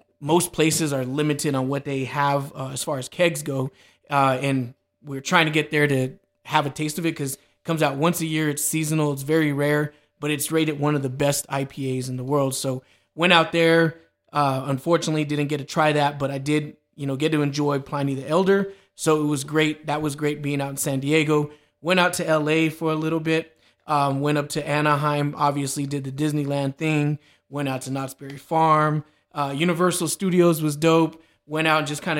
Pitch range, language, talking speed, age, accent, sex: 140-160 Hz, English, 220 wpm, 20-39, American, male